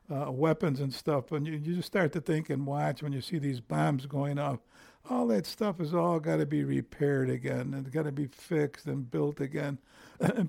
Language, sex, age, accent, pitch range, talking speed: English, male, 60-79, American, 135-160 Hz, 225 wpm